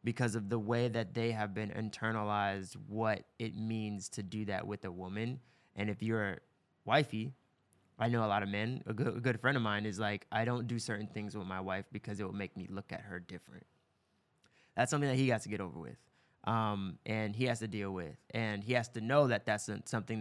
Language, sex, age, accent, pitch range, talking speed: English, male, 20-39, American, 100-115 Hz, 230 wpm